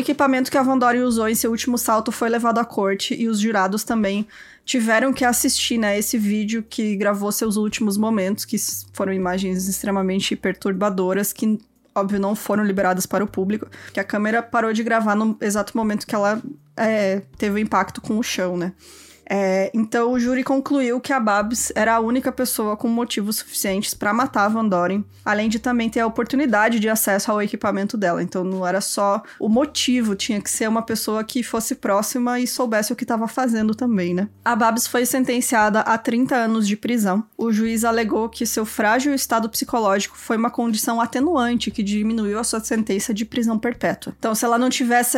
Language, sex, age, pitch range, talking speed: Portuguese, female, 20-39, 205-240 Hz, 195 wpm